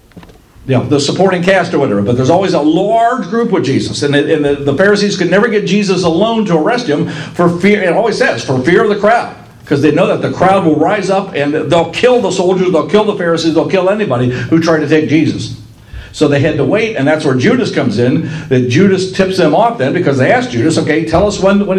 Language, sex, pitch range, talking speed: English, male, 125-175 Hz, 250 wpm